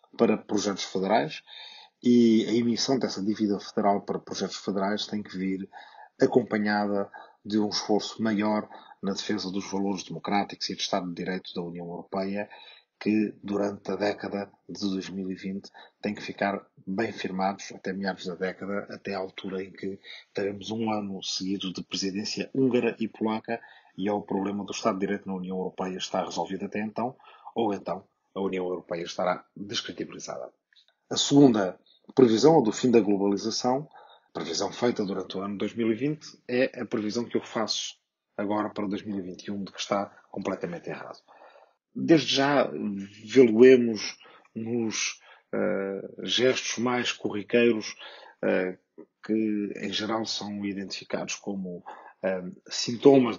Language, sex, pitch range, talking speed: Portuguese, male, 95-110 Hz, 145 wpm